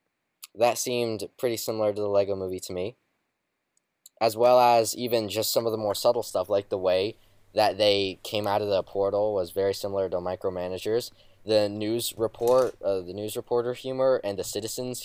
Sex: male